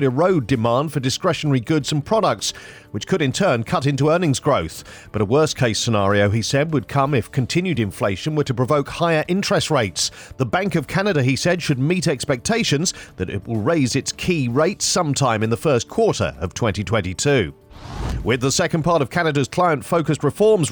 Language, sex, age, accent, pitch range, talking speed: English, male, 40-59, British, 125-165 Hz, 185 wpm